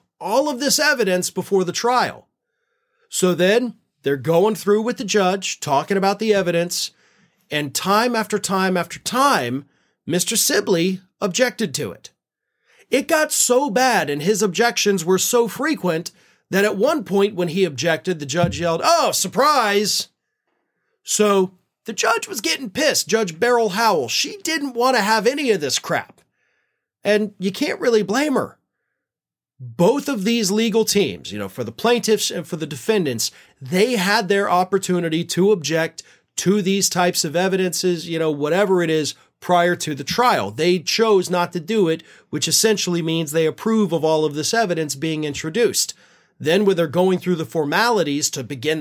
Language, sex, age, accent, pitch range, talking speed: English, male, 30-49, American, 160-220 Hz, 170 wpm